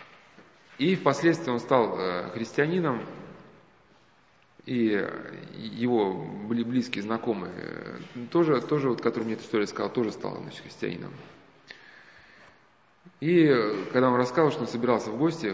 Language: Russian